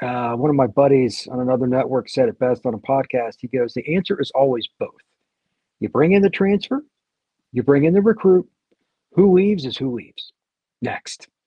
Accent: American